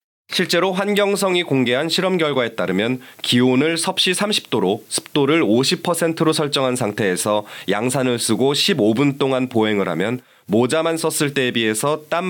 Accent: native